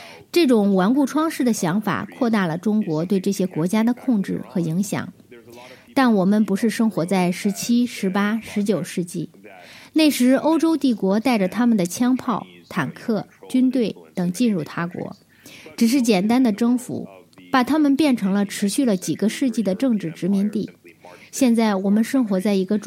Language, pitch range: English, 185-245 Hz